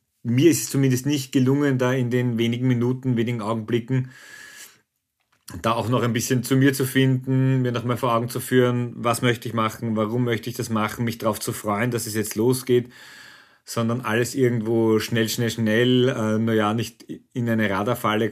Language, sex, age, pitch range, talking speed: German, male, 40-59, 115-135 Hz, 190 wpm